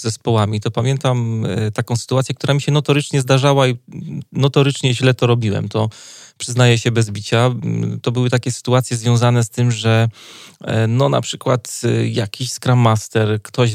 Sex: male